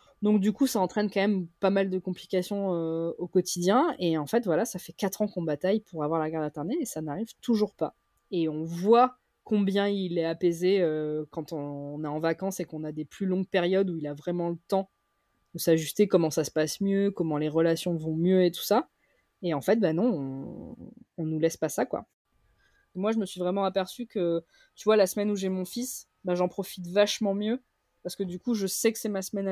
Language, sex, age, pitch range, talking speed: French, female, 20-39, 175-210 Hz, 240 wpm